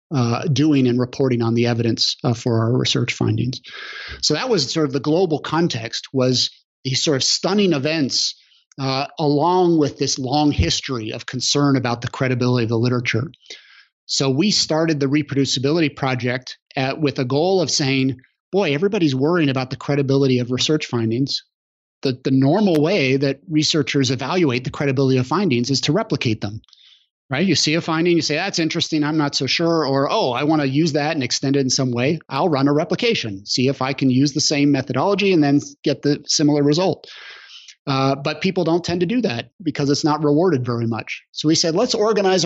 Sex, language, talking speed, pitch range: male, English, 195 wpm, 130-160 Hz